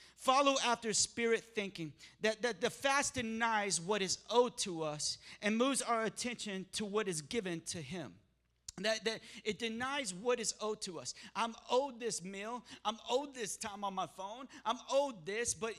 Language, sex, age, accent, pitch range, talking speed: English, male, 40-59, American, 175-220 Hz, 180 wpm